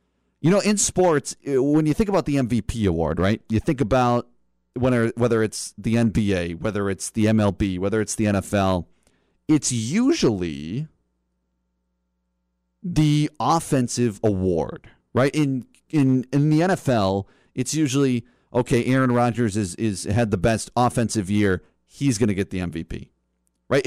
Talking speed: 145 wpm